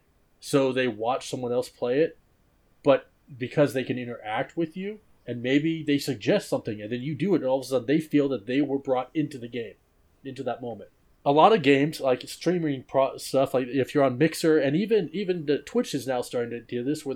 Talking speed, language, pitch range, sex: 225 wpm, English, 125-150 Hz, male